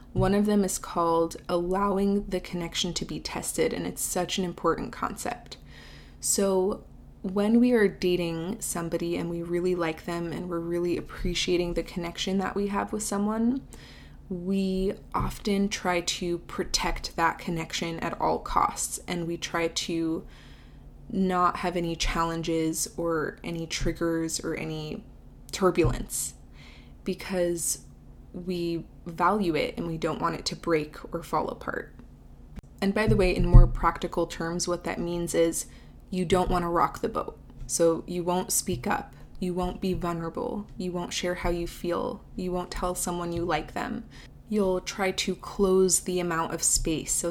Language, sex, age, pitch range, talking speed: English, female, 20-39, 165-185 Hz, 160 wpm